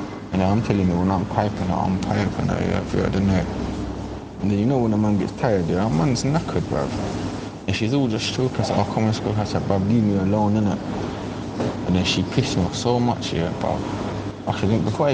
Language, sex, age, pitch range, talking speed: English, male, 20-39, 95-110 Hz, 230 wpm